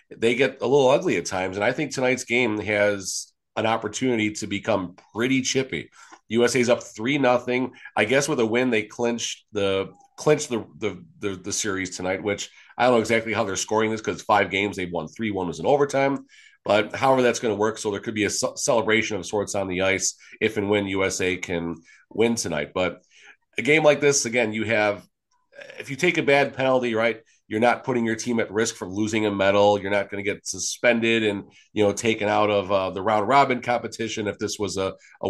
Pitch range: 100-125 Hz